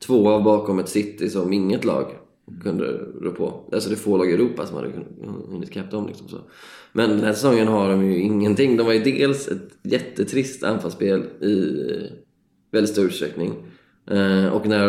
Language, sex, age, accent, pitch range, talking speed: English, male, 20-39, Swedish, 100-120 Hz, 180 wpm